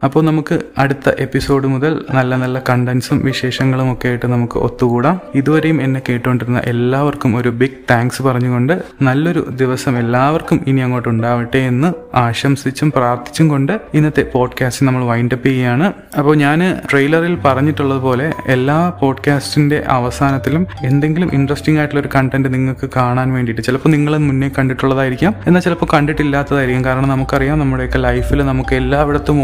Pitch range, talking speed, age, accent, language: 130-150 Hz, 130 wpm, 20-39, native, Malayalam